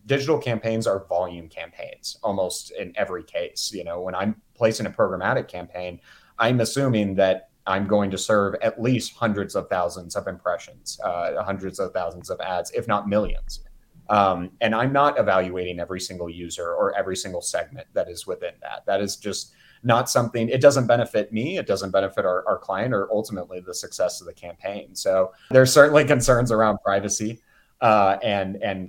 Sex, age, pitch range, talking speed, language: male, 30-49, 95-115 Hz, 180 wpm, English